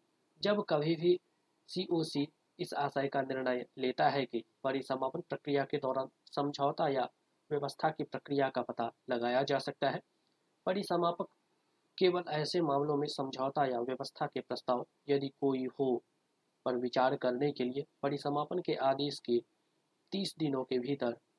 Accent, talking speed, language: native, 145 wpm, Hindi